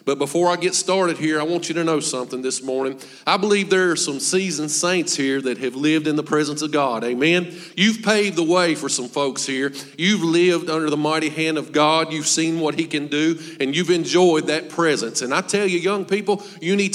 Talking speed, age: 235 wpm, 40-59